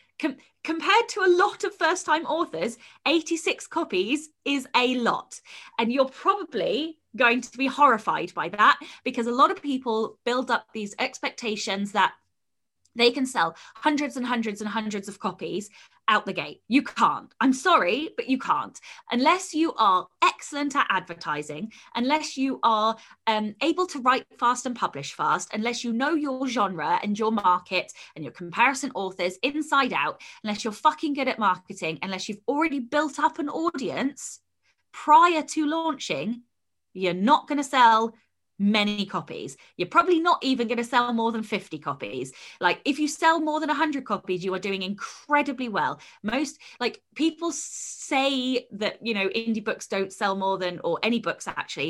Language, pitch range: English, 200-295 Hz